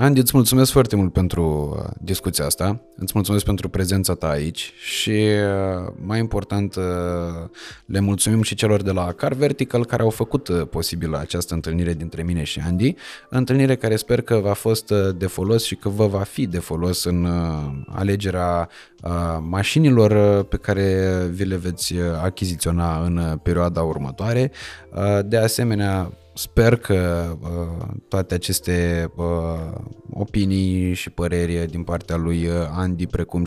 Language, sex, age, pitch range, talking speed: Romanian, male, 20-39, 85-100 Hz, 140 wpm